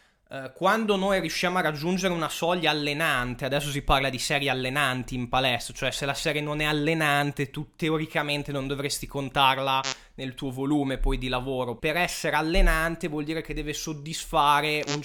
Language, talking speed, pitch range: Italian, 170 wpm, 145-170 Hz